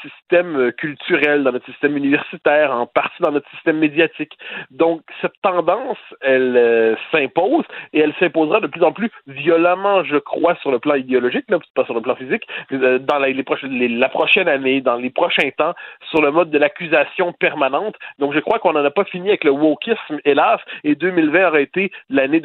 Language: French